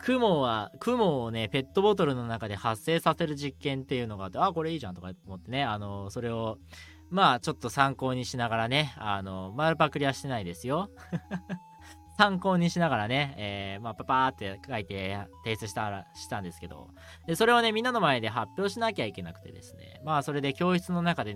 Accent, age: native, 20-39